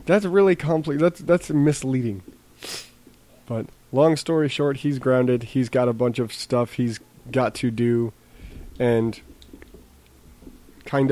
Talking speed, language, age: 130 wpm, English, 20-39